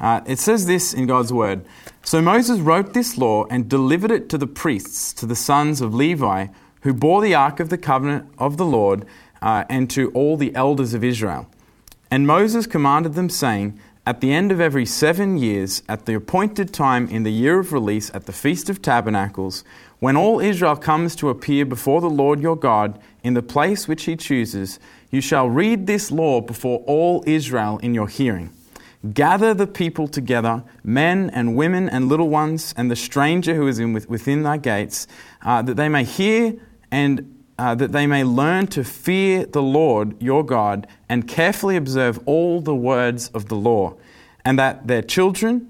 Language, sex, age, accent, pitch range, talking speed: English, male, 20-39, Australian, 115-160 Hz, 190 wpm